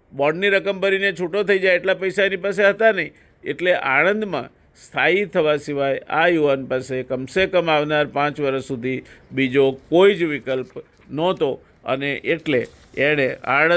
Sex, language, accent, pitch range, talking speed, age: male, Gujarati, native, 135-175 Hz, 120 wpm, 50-69